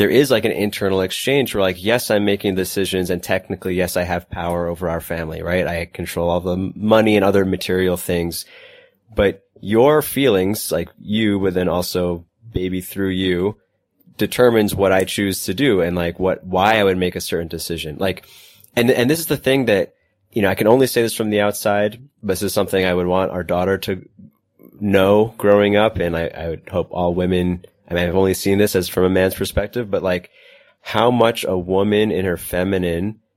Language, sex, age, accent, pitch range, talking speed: English, male, 20-39, American, 90-105 Hz, 210 wpm